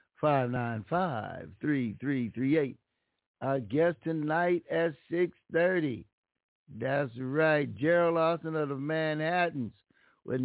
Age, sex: 60-79, male